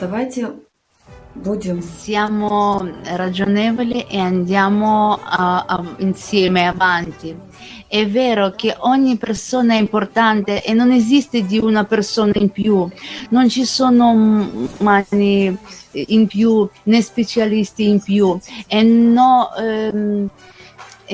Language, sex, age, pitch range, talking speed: Italian, female, 30-49, 195-230 Hz, 90 wpm